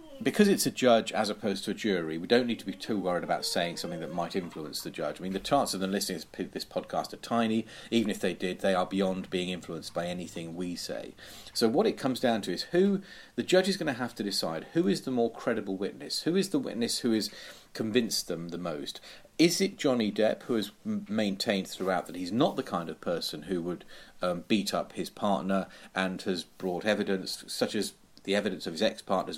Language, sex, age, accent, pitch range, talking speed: English, male, 40-59, British, 90-115 Hz, 235 wpm